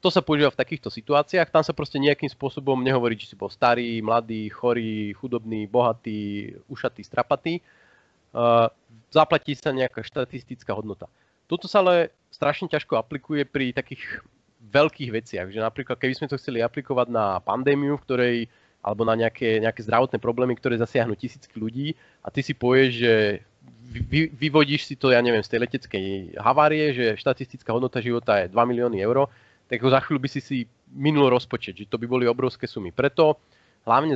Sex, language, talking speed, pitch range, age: male, Slovak, 170 wpm, 115-140 Hz, 30-49